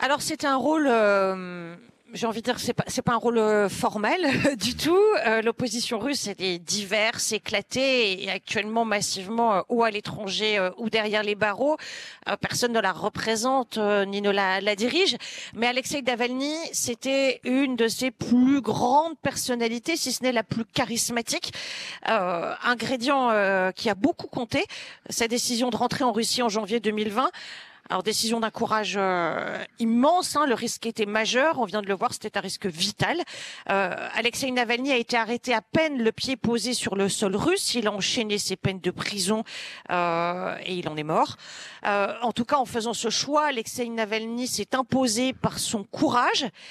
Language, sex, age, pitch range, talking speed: French, female, 40-59, 210-260 Hz, 185 wpm